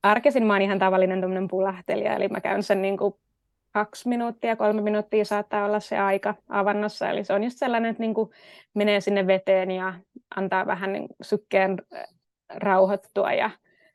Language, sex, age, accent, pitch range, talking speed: Finnish, female, 20-39, native, 195-210 Hz, 155 wpm